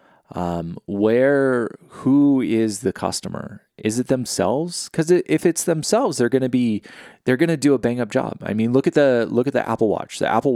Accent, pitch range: American, 95-125 Hz